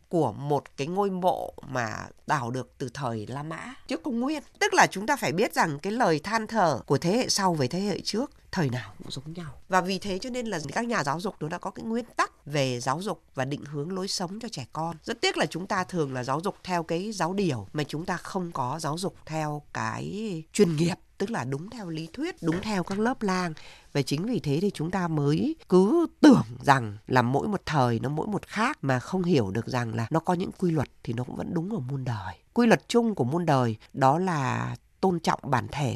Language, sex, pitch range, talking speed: Vietnamese, female, 140-195 Hz, 250 wpm